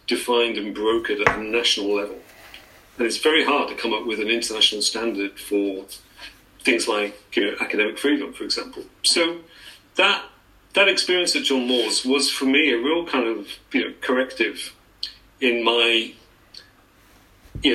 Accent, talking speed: British, 160 wpm